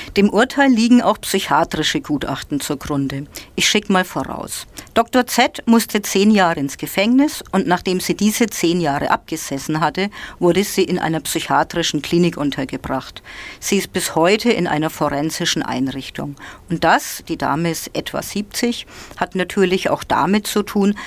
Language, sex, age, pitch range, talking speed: German, female, 50-69, 155-210 Hz, 155 wpm